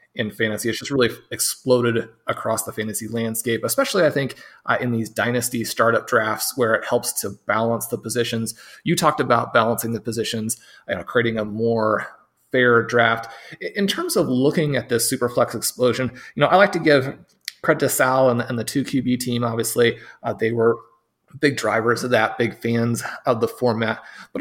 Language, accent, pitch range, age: English, American, 115-140 Hz, 30-49